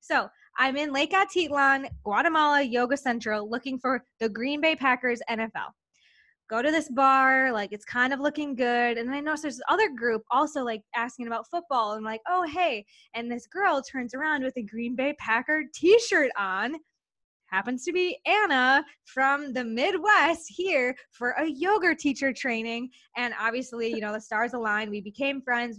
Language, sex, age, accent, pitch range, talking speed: English, female, 20-39, American, 225-280 Hz, 180 wpm